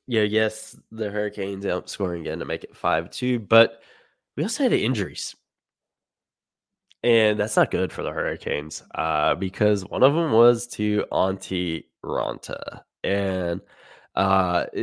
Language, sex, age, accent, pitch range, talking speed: English, male, 10-29, American, 95-110 Hz, 140 wpm